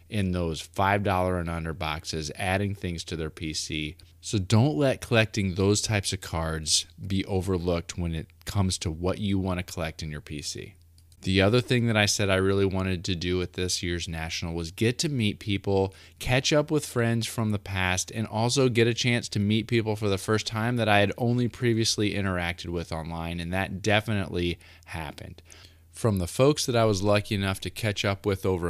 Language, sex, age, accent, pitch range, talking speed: English, male, 20-39, American, 90-115 Hz, 205 wpm